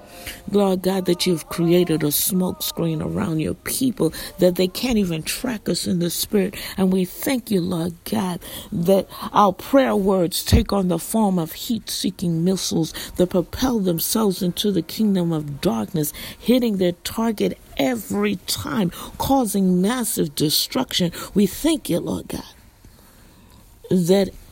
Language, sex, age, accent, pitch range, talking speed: English, female, 50-69, American, 165-210 Hz, 145 wpm